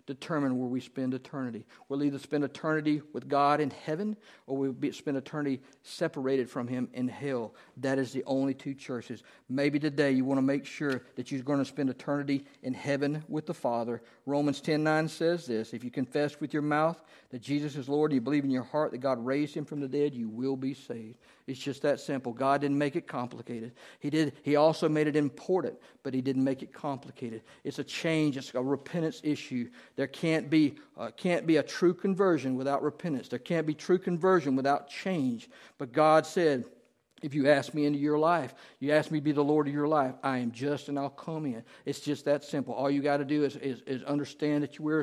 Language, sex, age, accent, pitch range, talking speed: English, male, 50-69, American, 135-155 Hz, 225 wpm